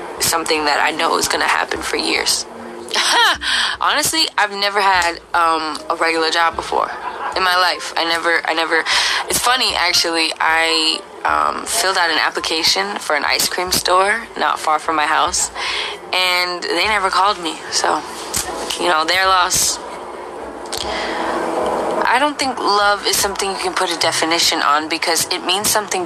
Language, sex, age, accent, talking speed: English, female, 10-29, American, 165 wpm